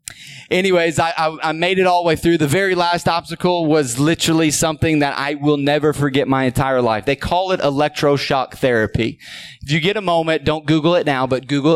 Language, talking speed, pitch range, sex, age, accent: English, 210 wpm, 135-175 Hz, male, 30-49, American